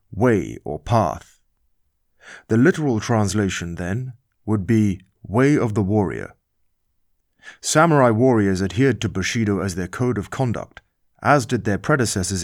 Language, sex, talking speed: English, male, 130 wpm